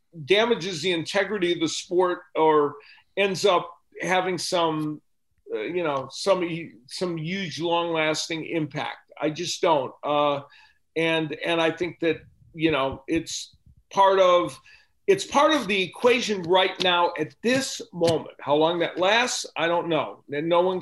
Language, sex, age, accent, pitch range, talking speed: English, male, 40-59, American, 165-210 Hz, 155 wpm